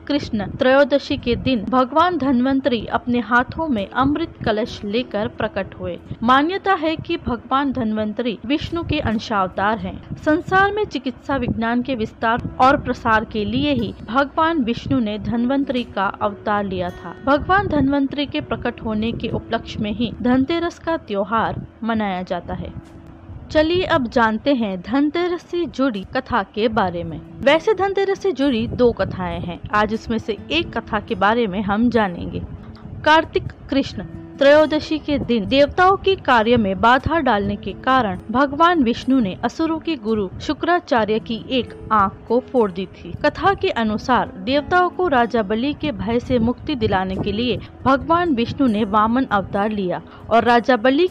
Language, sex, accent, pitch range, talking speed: Hindi, female, native, 220-290 Hz, 160 wpm